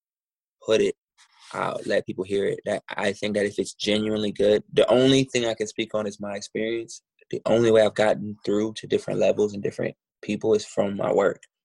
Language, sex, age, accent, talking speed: English, male, 20-39, American, 210 wpm